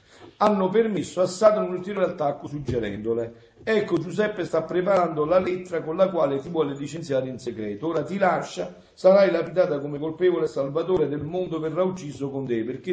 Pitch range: 135-190 Hz